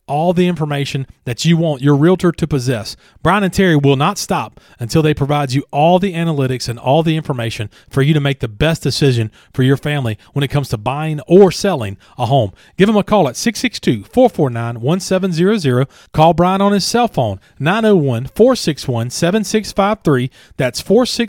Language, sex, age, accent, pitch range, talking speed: English, male, 40-59, American, 130-185 Hz, 170 wpm